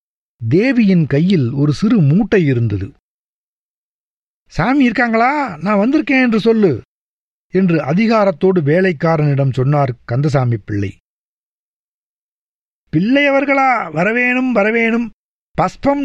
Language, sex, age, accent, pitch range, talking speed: Tamil, male, 50-69, native, 160-225 Hz, 80 wpm